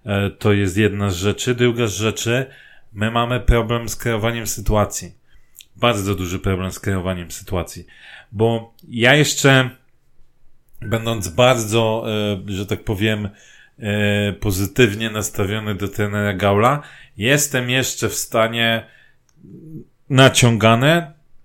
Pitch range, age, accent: 105-120 Hz, 30-49, native